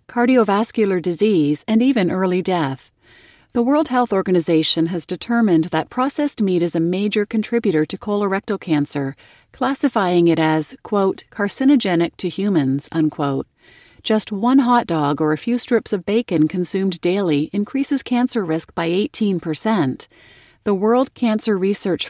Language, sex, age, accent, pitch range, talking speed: English, female, 40-59, American, 165-225 Hz, 140 wpm